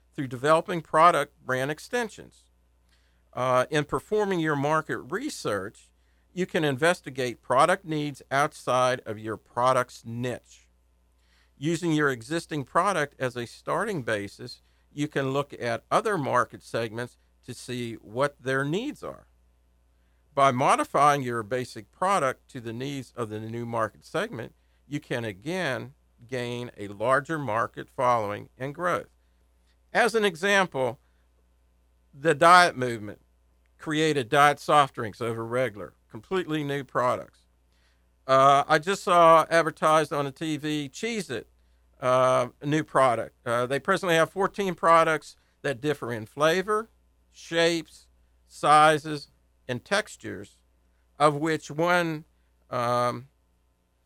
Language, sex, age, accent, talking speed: English, male, 50-69, American, 120 wpm